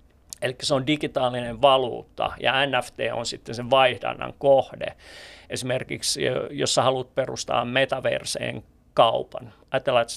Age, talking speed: 30-49, 125 wpm